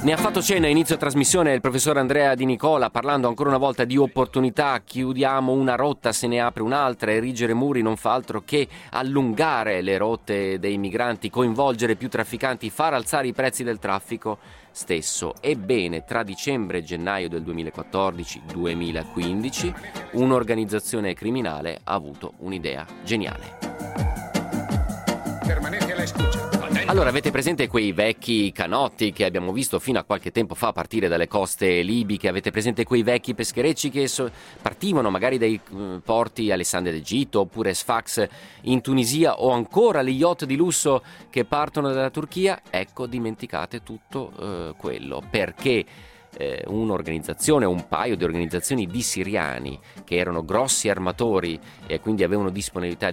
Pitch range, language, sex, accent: 95-130 Hz, Italian, male, native